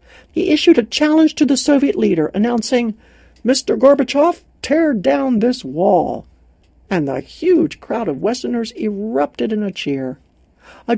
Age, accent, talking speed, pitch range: 60-79, American, 140 wpm, 170-260 Hz